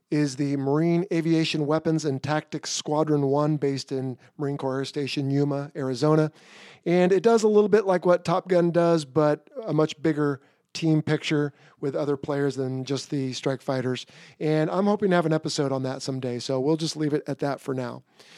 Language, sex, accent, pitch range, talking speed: English, male, American, 140-170 Hz, 200 wpm